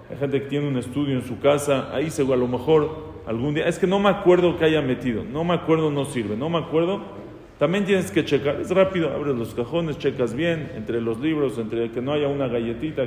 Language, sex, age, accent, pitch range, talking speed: English, male, 40-59, Mexican, 120-150 Hz, 240 wpm